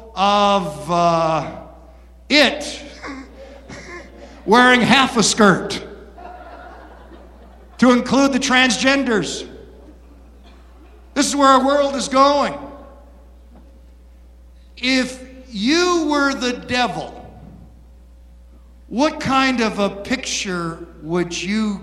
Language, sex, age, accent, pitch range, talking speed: English, male, 50-69, American, 165-245 Hz, 80 wpm